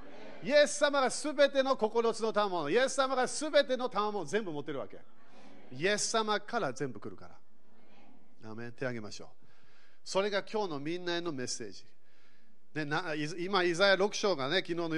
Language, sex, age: Japanese, male, 40-59